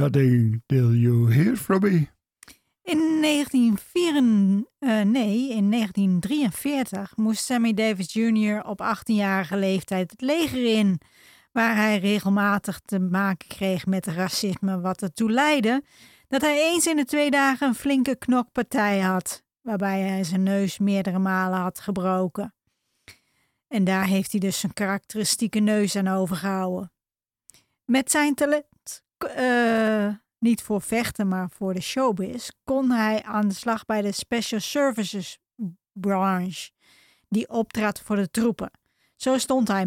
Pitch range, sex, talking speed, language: 190-240 Hz, female, 130 wpm, Dutch